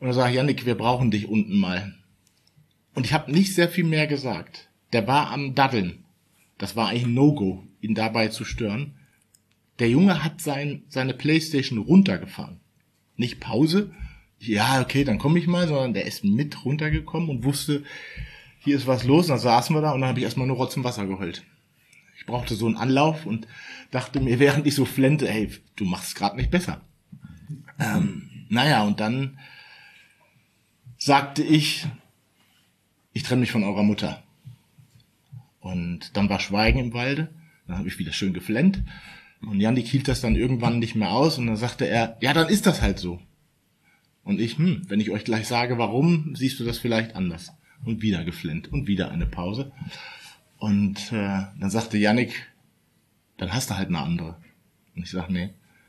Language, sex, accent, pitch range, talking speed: German, male, German, 105-145 Hz, 185 wpm